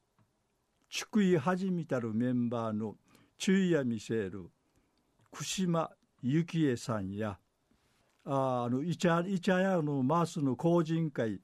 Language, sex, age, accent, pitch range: Japanese, male, 50-69, native, 125-170 Hz